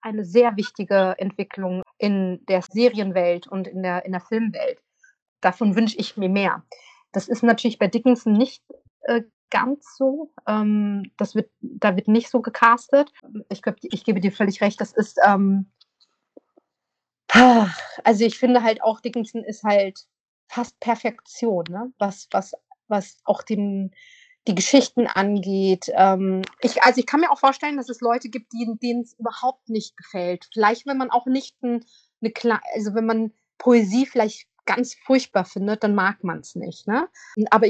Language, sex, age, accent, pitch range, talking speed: German, female, 30-49, German, 200-245 Hz, 160 wpm